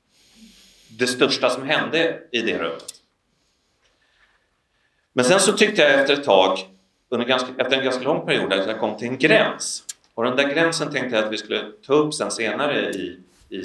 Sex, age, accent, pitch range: male, 30-49, Swedish, 110-150 Hz